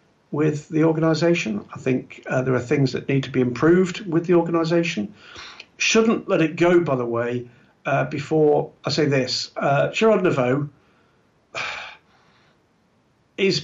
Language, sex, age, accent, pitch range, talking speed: English, male, 50-69, British, 125-150 Hz, 145 wpm